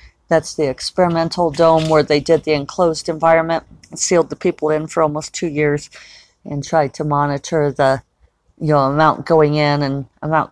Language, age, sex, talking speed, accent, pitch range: English, 50-69, female, 170 wpm, American, 140-160 Hz